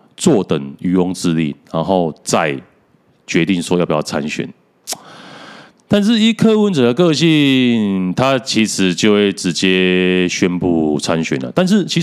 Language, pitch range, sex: Chinese, 85-130 Hz, male